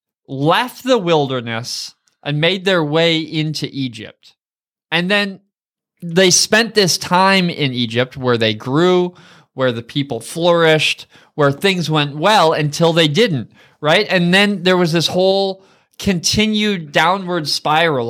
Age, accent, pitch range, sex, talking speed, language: 20-39, American, 140-190 Hz, male, 135 wpm, English